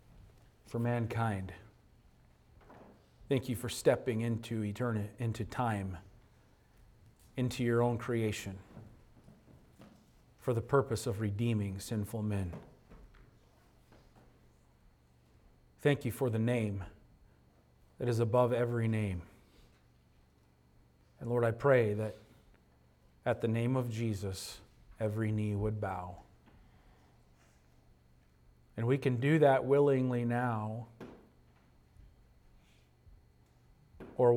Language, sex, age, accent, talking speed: English, male, 40-59, American, 95 wpm